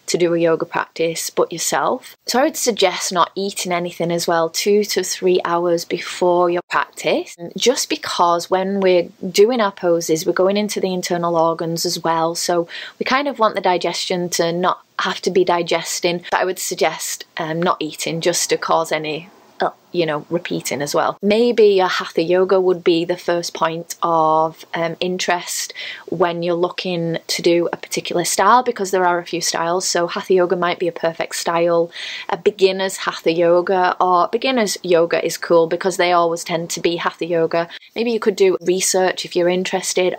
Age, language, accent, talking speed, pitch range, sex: 20-39, English, British, 190 wpm, 170-195 Hz, female